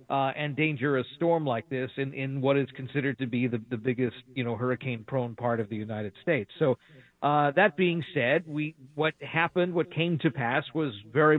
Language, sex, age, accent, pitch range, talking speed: English, male, 50-69, American, 125-150 Hz, 205 wpm